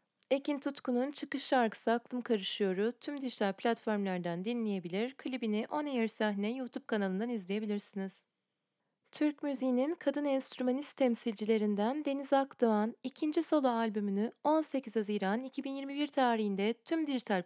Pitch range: 200-260 Hz